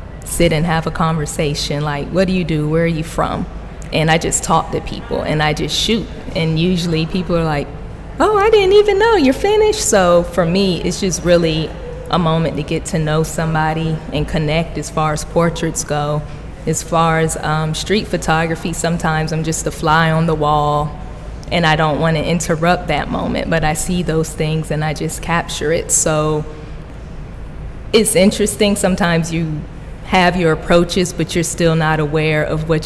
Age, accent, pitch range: 20-39, American, 155-170 Hz